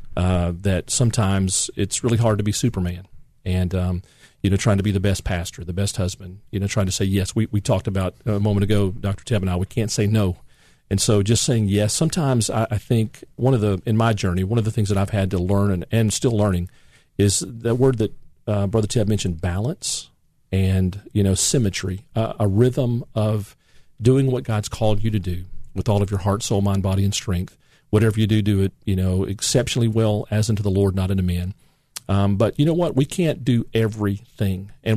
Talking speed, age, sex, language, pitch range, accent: 225 wpm, 40-59, male, English, 95-115 Hz, American